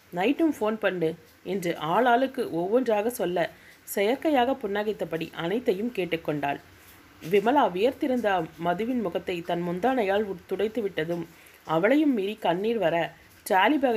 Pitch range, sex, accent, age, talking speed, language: 170-235 Hz, female, native, 30-49, 105 wpm, Tamil